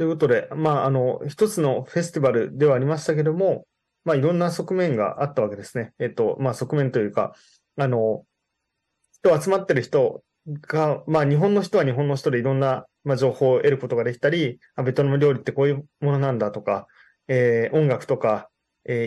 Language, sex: Japanese, male